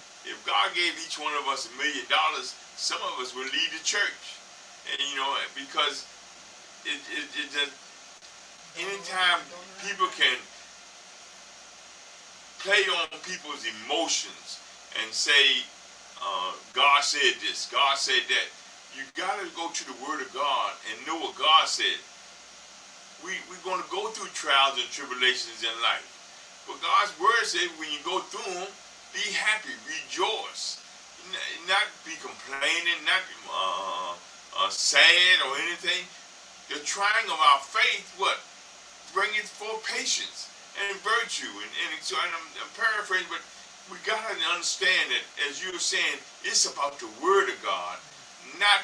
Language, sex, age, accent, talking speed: English, male, 50-69, American, 150 wpm